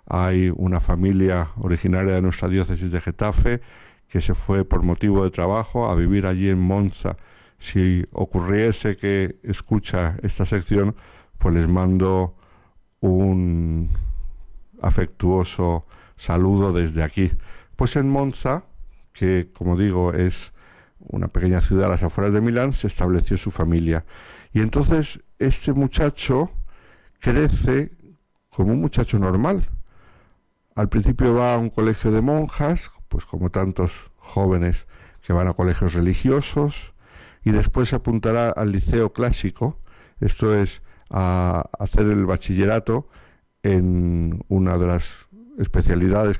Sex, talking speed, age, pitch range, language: male, 125 wpm, 60-79, 90-110 Hz, Spanish